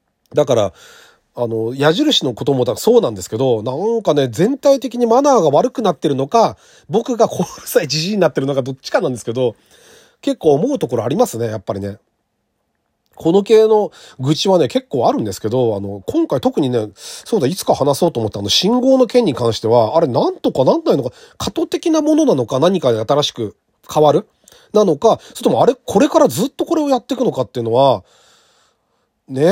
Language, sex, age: Japanese, male, 40-59